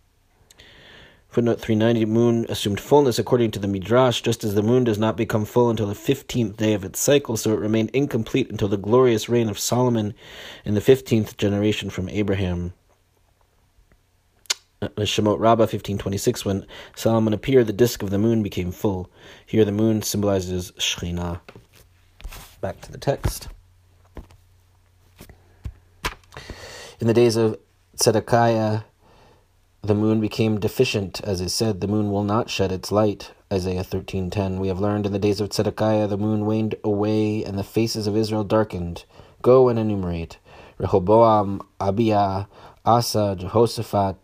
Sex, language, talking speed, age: male, English, 145 wpm, 30-49